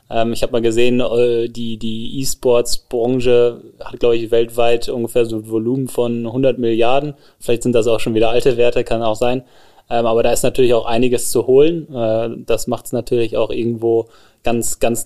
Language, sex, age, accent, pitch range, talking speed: German, male, 20-39, German, 115-125 Hz, 180 wpm